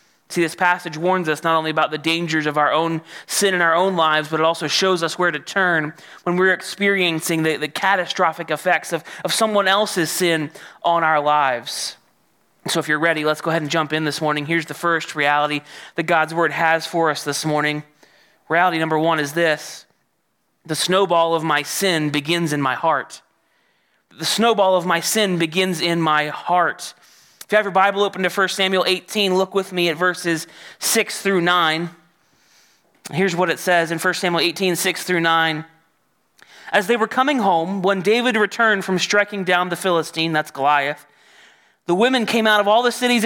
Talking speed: 195 wpm